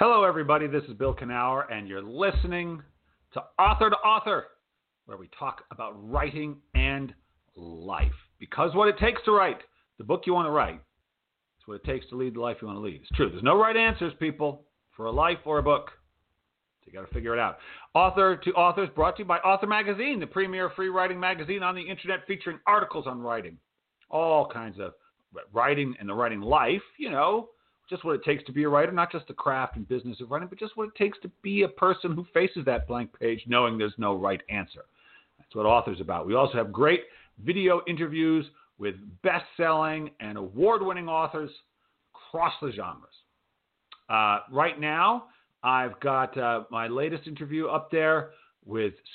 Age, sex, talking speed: 40-59, male, 195 wpm